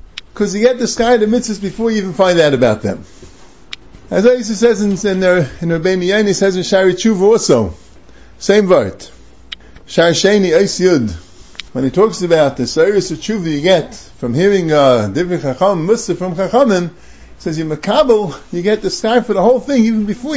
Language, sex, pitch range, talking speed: English, male, 155-230 Hz, 190 wpm